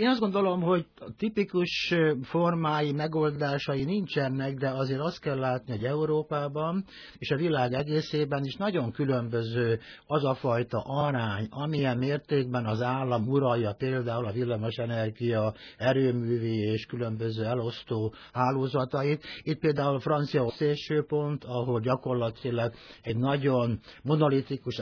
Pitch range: 120-150 Hz